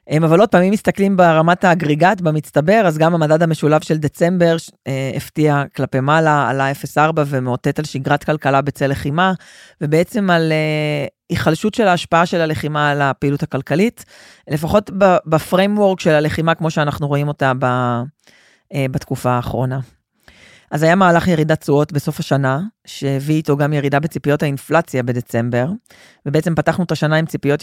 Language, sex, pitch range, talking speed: Hebrew, female, 140-170 Hz, 150 wpm